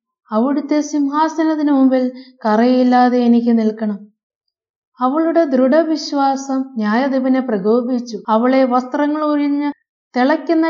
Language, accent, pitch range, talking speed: Malayalam, native, 240-280 Hz, 85 wpm